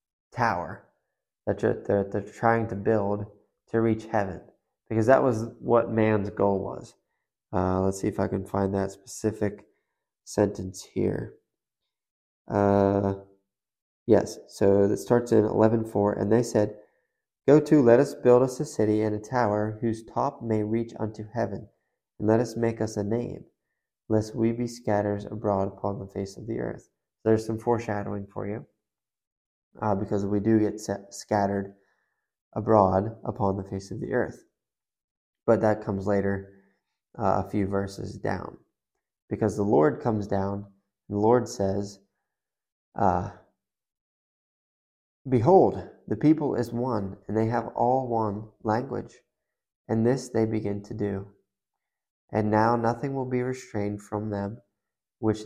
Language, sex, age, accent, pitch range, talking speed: English, male, 20-39, American, 100-115 Hz, 150 wpm